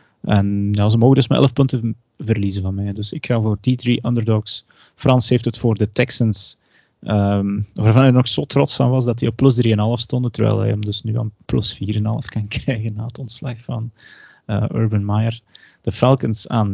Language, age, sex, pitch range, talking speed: Dutch, 30-49, male, 105-125 Hz, 205 wpm